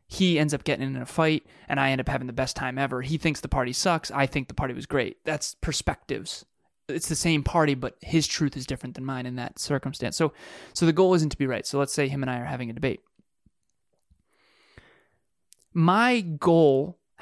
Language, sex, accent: English, male, American